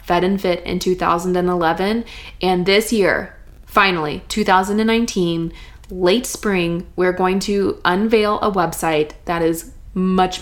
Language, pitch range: English, 180-220 Hz